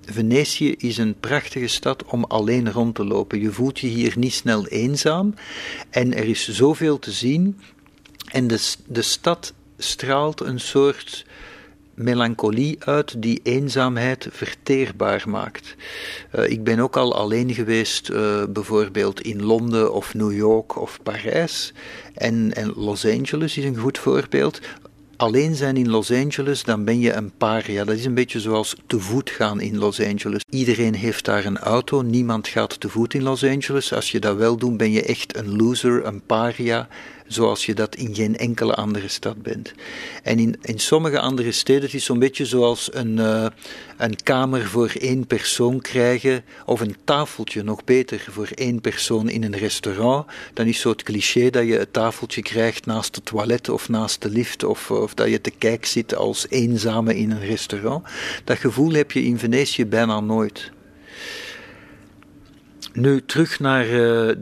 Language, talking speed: Dutch, 175 wpm